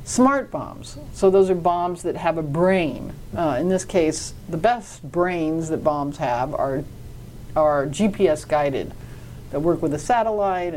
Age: 50-69